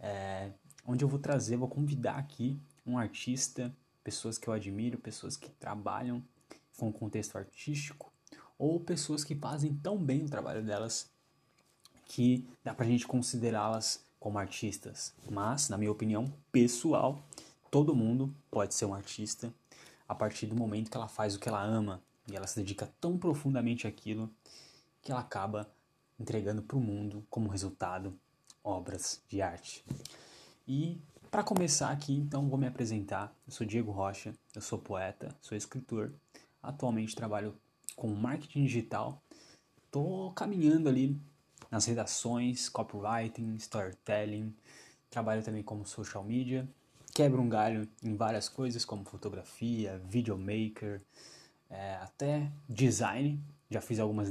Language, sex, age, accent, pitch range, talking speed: Portuguese, male, 10-29, Brazilian, 105-140 Hz, 140 wpm